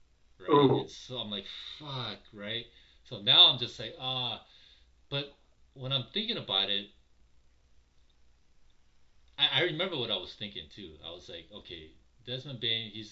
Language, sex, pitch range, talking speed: English, male, 85-125 Hz, 160 wpm